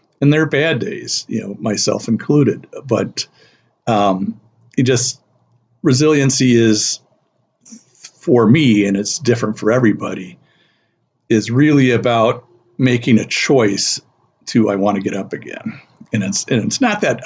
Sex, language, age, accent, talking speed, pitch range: male, English, 50-69, American, 135 wpm, 105-130 Hz